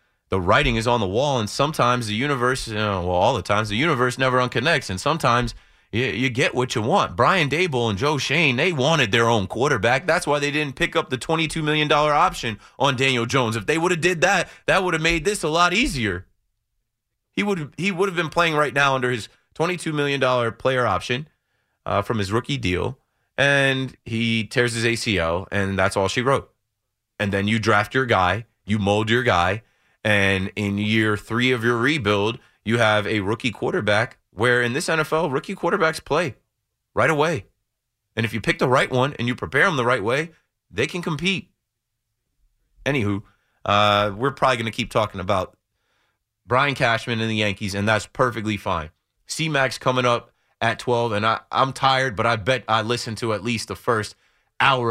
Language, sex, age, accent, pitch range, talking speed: English, male, 30-49, American, 105-135 Hz, 195 wpm